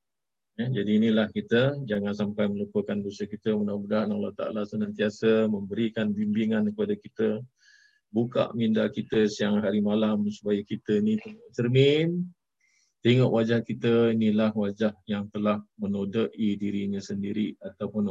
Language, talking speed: Malay, 125 wpm